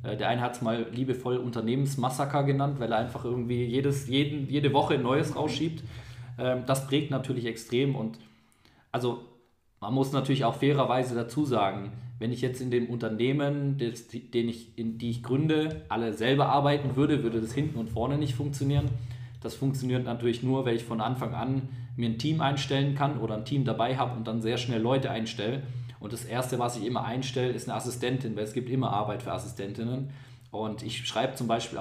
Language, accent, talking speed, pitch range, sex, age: German, German, 190 wpm, 115-135 Hz, male, 20-39